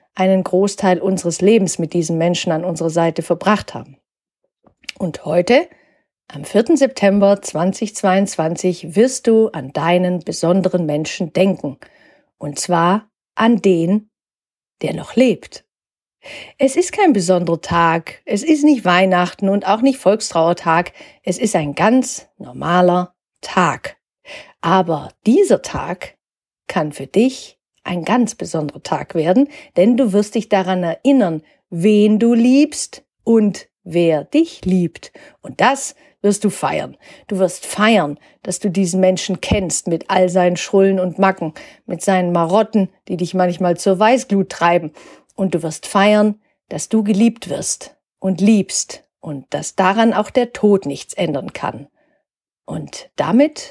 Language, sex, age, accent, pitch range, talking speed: German, female, 50-69, German, 175-230 Hz, 140 wpm